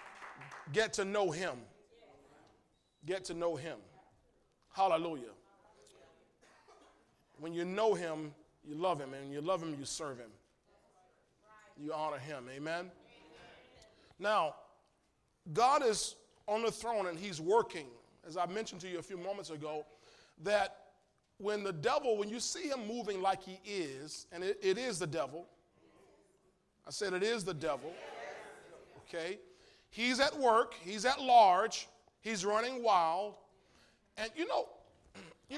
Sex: male